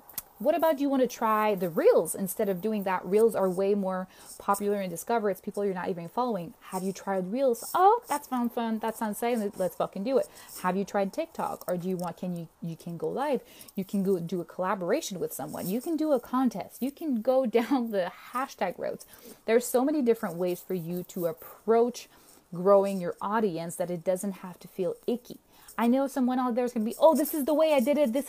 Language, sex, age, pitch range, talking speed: English, female, 20-39, 195-255 Hz, 235 wpm